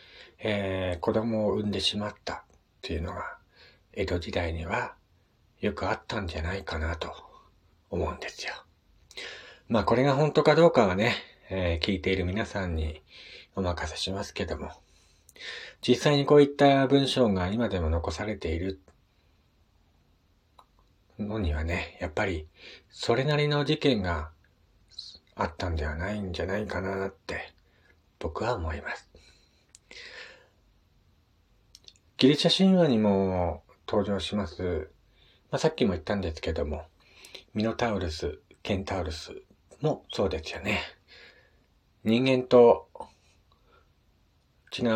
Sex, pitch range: male, 85-110 Hz